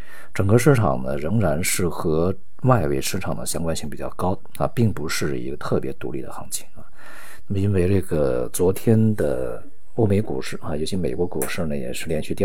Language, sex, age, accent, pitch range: Chinese, male, 50-69, native, 75-100 Hz